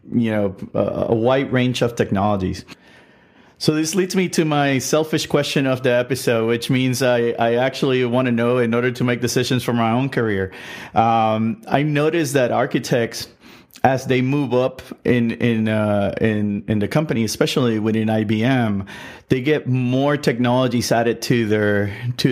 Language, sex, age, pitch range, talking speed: English, male, 30-49, 110-130 Hz, 165 wpm